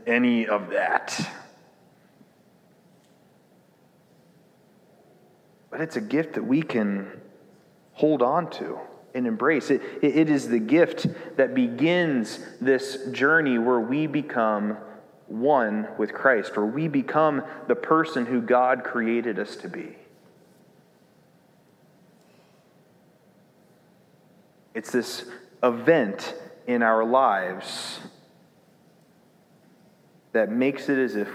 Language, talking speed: English, 100 wpm